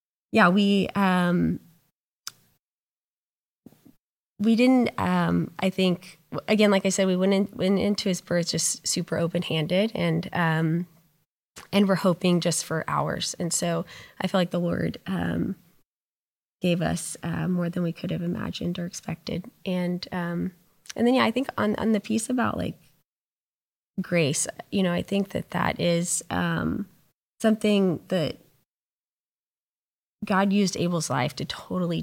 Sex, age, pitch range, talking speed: female, 20-39, 165-195 Hz, 150 wpm